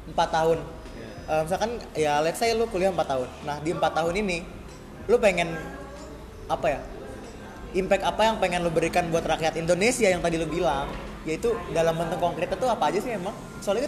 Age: 20-39